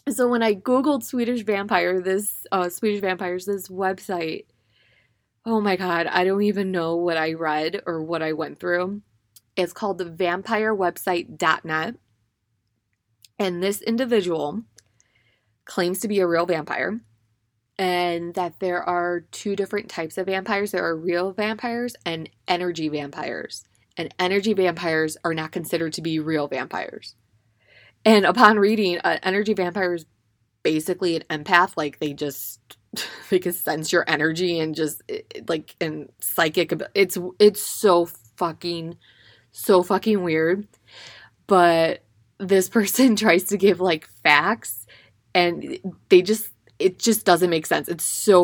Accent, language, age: American, English, 20-39